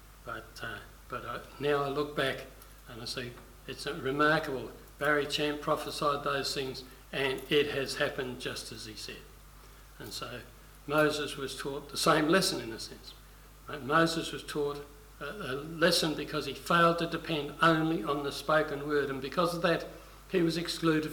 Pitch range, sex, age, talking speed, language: 135-160 Hz, male, 60-79, 175 wpm, English